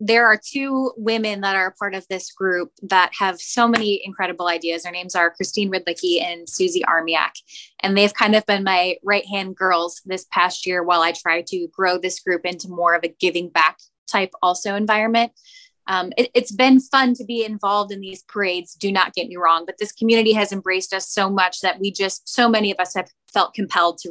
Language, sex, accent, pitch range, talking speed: English, female, American, 180-215 Hz, 215 wpm